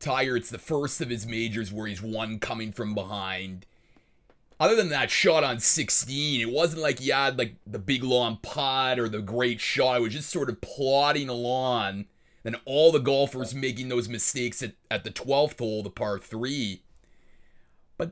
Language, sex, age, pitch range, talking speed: English, male, 30-49, 115-140 Hz, 185 wpm